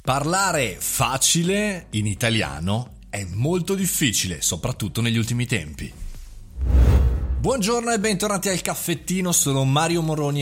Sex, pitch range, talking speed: male, 100-155 Hz, 110 wpm